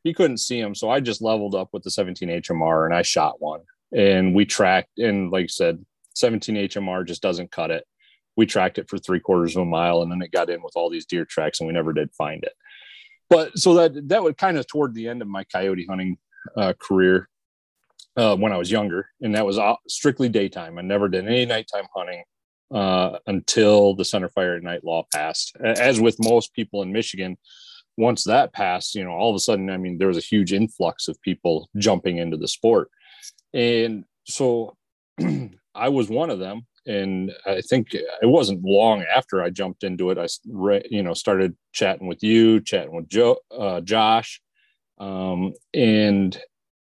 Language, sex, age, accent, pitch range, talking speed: English, male, 30-49, American, 90-110 Hz, 200 wpm